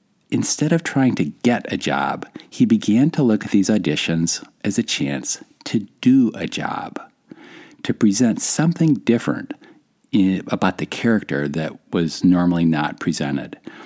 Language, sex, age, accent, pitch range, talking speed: English, male, 50-69, American, 85-145 Hz, 145 wpm